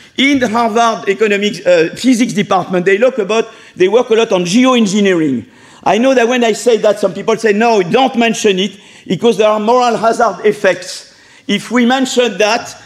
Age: 50-69